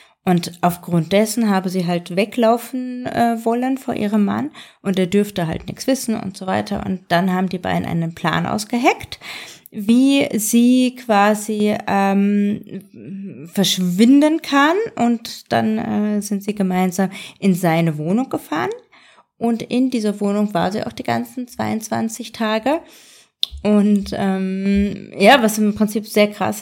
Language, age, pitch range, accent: German, 20-39, 190-230 Hz, German